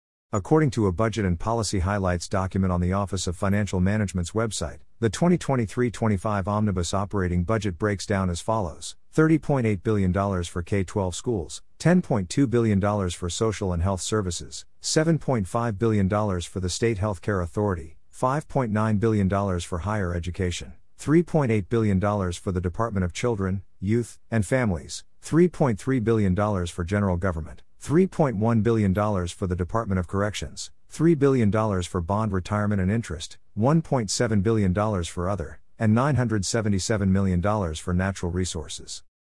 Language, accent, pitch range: English, American, 90-115 Hz